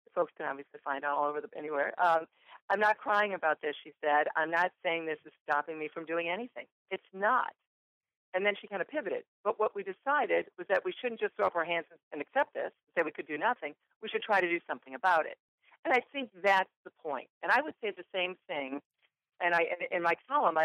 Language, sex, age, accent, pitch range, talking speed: English, female, 50-69, American, 155-205 Hz, 240 wpm